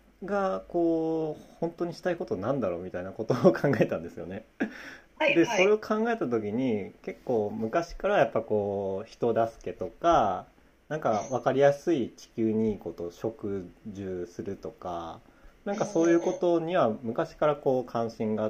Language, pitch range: Japanese, 105-170 Hz